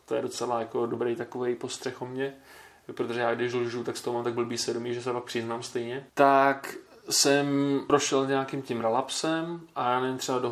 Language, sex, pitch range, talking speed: Czech, male, 115-130 Hz, 205 wpm